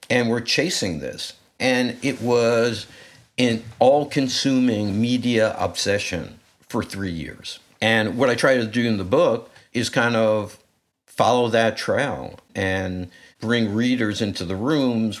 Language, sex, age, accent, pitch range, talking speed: English, male, 60-79, American, 95-120 Hz, 140 wpm